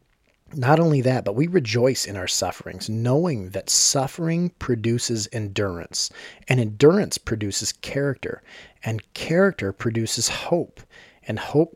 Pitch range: 100-130 Hz